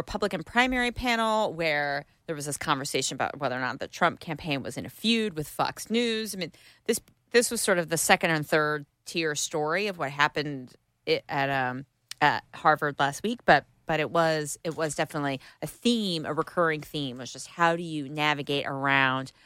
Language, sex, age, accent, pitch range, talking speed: English, female, 30-49, American, 140-185 Hz, 195 wpm